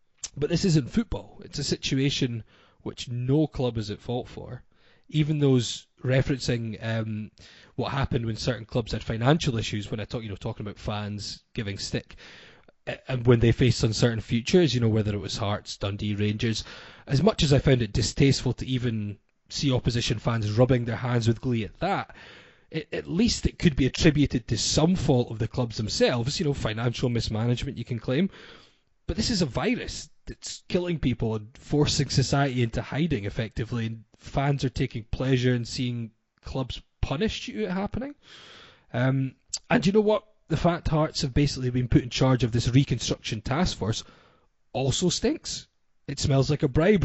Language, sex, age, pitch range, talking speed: English, male, 20-39, 115-145 Hz, 180 wpm